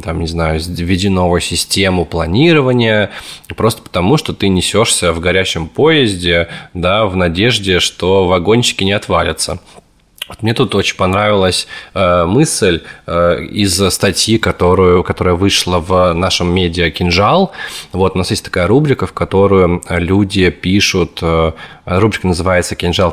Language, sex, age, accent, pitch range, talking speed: Russian, male, 20-39, native, 90-110 Hz, 120 wpm